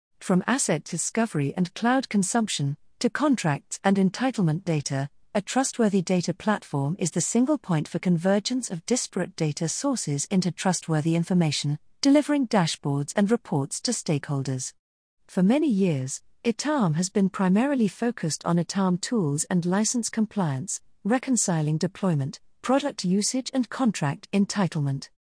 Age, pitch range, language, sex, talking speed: 50-69, 155-215 Hz, English, female, 130 wpm